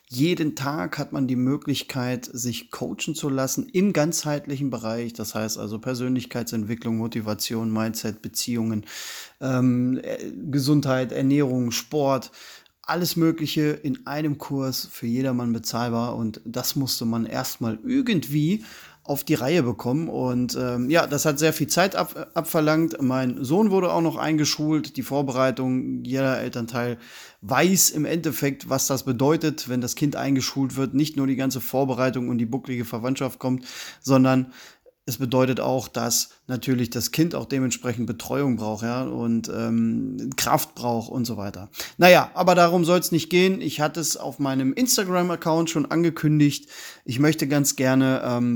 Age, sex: 30-49, male